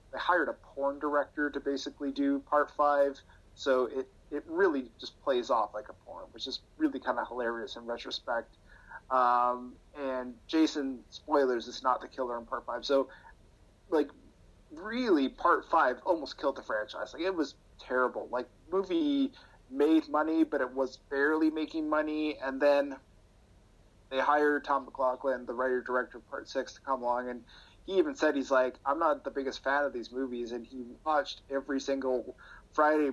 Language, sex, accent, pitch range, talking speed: English, male, American, 125-150 Hz, 175 wpm